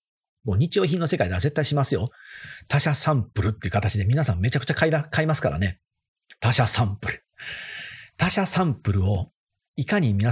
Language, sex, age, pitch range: Japanese, male, 40-59, 110-150 Hz